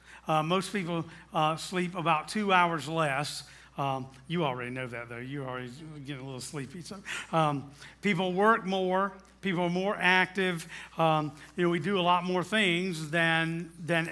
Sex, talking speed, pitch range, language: male, 175 wpm, 155-190 Hz, English